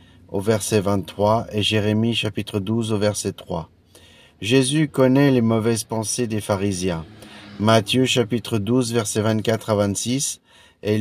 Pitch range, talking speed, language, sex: 105-125 Hz, 135 wpm, French, male